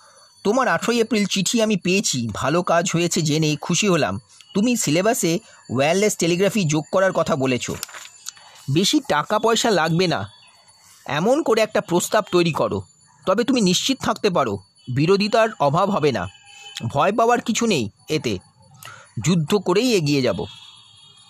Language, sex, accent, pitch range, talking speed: Bengali, male, native, 155-200 Hz, 115 wpm